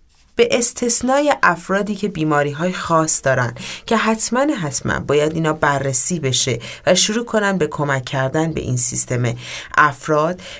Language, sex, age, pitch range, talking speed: Persian, female, 30-49, 150-225 Hz, 135 wpm